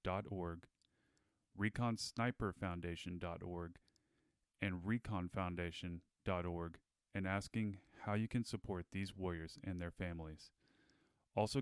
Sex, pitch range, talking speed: male, 90-105 Hz, 85 wpm